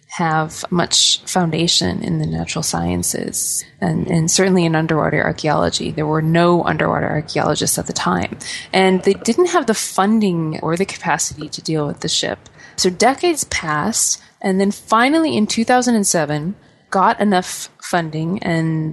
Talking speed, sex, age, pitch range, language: 150 wpm, female, 20-39, 165-205 Hz, English